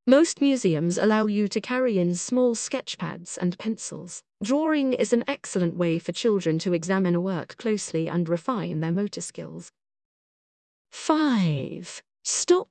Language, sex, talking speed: English, female, 145 wpm